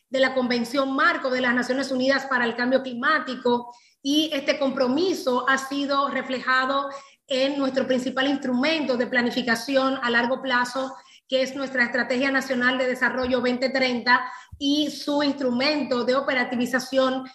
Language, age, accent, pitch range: English, 30-49, American, 250-280 Hz